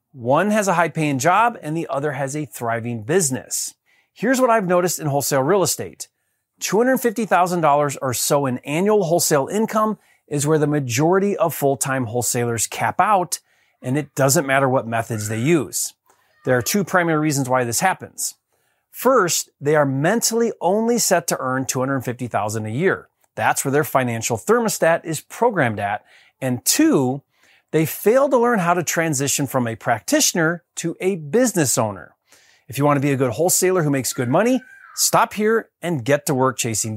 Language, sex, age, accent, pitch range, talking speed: English, male, 30-49, American, 135-205 Hz, 170 wpm